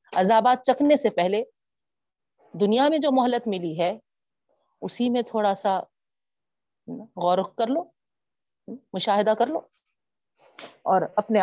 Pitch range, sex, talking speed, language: 185-245 Hz, female, 120 wpm, Urdu